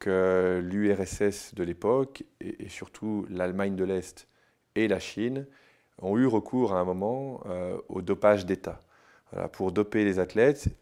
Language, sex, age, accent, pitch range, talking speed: French, male, 30-49, French, 90-105 Hz, 150 wpm